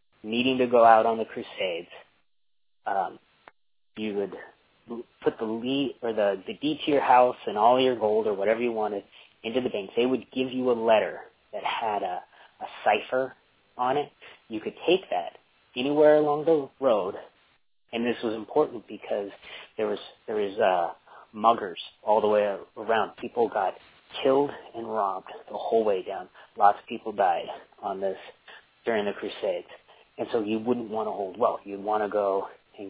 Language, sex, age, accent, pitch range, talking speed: English, male, 30-49, American, 105-130 Hz, 180 wpm